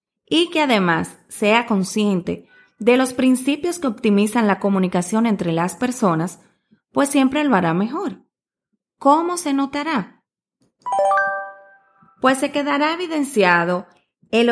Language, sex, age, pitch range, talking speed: Spanish, female, 30-49, 190-265 Hz, 115 wpm